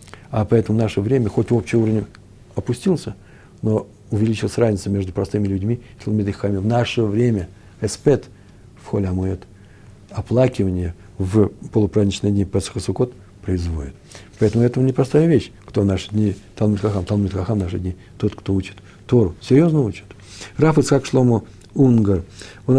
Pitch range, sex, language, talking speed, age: 100-125 Hz, male, Russian, 130 wpm, 60-79